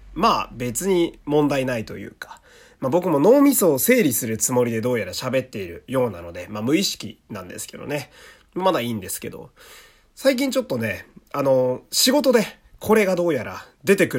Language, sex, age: Japanese, male, 30-49